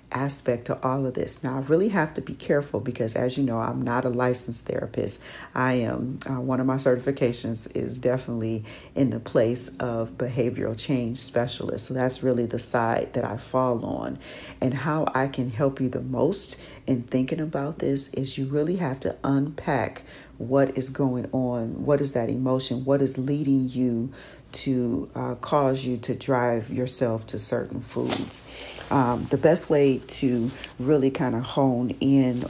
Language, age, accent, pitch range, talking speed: English, 40-59, American, 125-140 Hz, 175 wpm